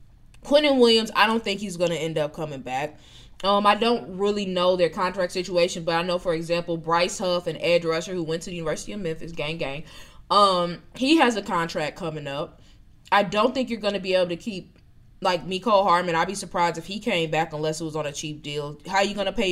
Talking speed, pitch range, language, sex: 245 wpm, 160-205 Hz, English, female